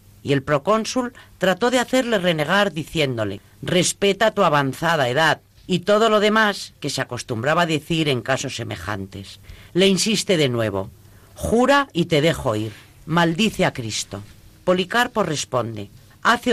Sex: female